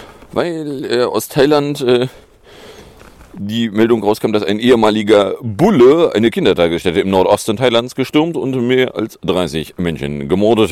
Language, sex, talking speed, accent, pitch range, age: German, male, 135 wpm, German, 90-130 Hz, 40-59